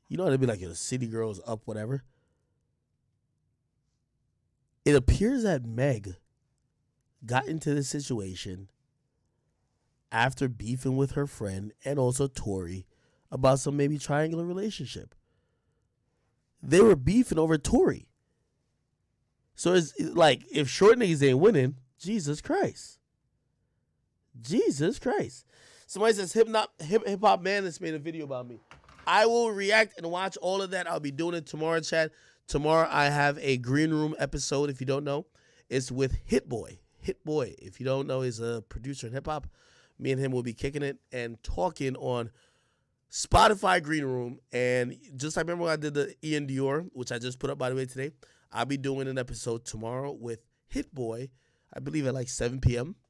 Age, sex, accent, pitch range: 20-39, male, American, 125-155 Hz